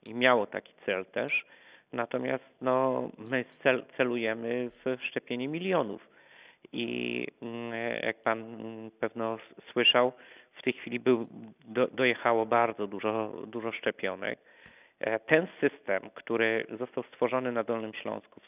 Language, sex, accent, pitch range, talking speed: Polish, male, native, 110-125 Hz, 115 wpm